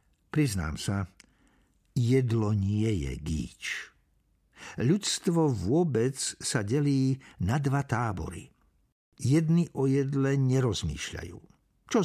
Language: Slovak